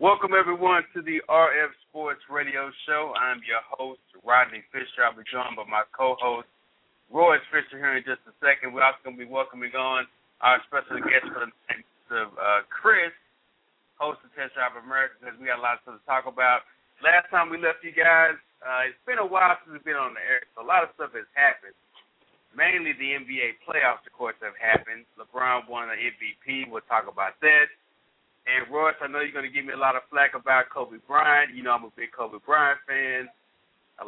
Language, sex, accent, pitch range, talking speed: English, male, American, 125-160 Hz, 215 wpm